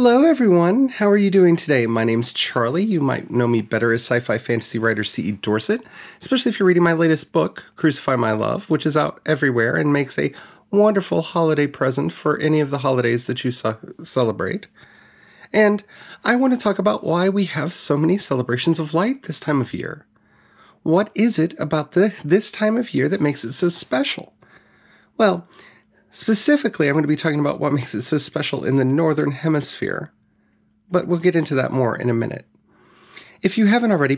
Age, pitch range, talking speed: 30-49, 135-185 Hz, 195 wpm